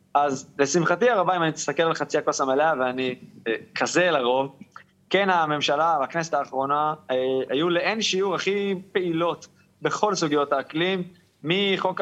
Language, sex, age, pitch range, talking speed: Hebrew, male, 20-39, 140-175 Hz, 140 wpm